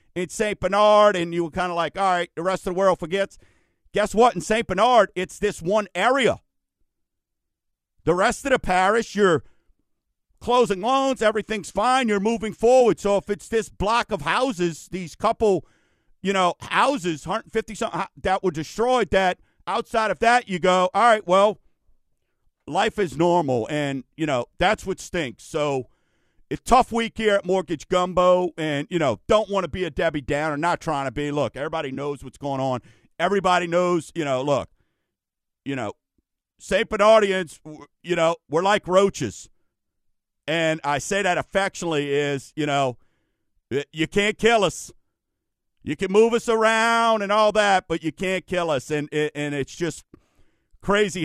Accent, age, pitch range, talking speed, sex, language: American, 50-69, 155-205 Hz, 170 wpm, male, English